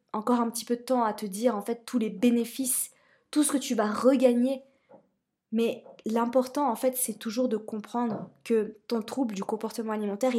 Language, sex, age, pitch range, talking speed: French, female, 20-39, 215-250 Hz, 195 wpm